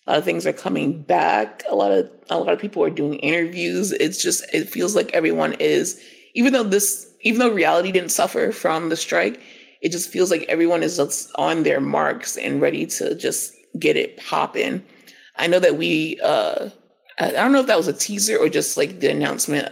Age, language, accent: 30-49, English, American